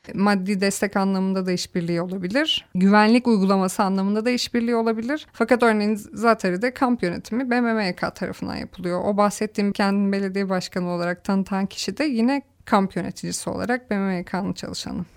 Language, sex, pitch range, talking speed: Turkish, female, 185-220 Hz, 140 wpm